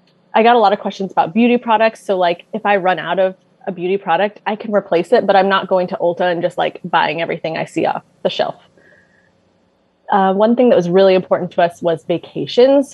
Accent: American